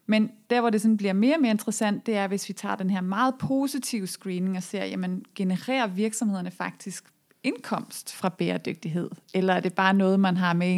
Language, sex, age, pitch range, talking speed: Danish, female, 30-49, 180-220 Hz, 210 wpm